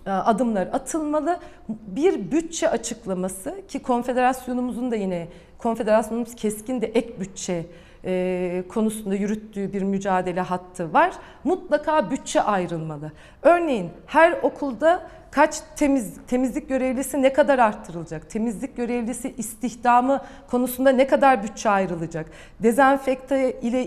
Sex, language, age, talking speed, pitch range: female, Turkish, 40-59, 110 wpm, 215-275 Hz